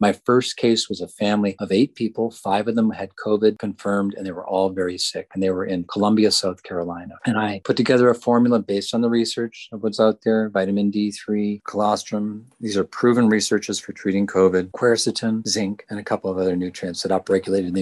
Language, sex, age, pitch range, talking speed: English, male, 40-59, 95-110 Hz, 210 wpm